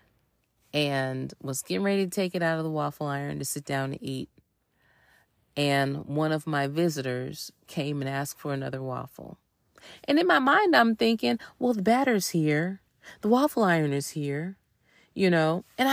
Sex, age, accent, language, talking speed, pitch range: female, 30-49, American, English, 175 wpm, 140-200 Hz